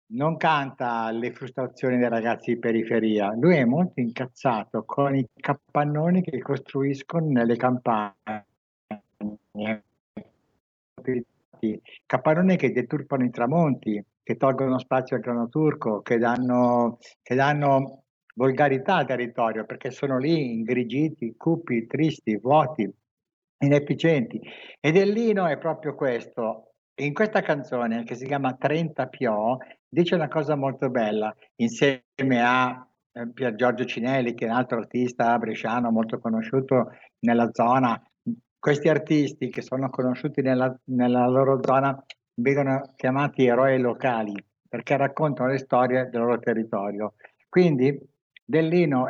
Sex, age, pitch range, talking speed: male, 60-79, 120-145 Hz, 125 wpm